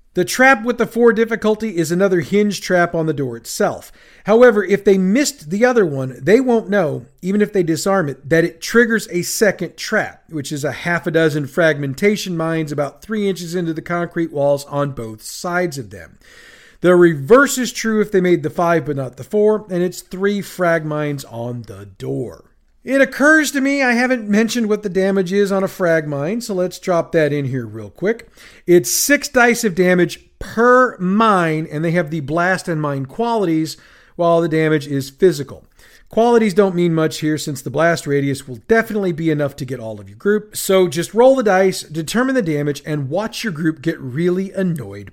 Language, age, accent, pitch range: English, 40-59, American, 150-210 Hz